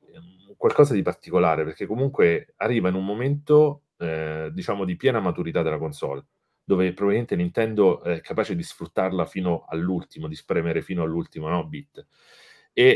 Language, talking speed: Italian, 150 wpm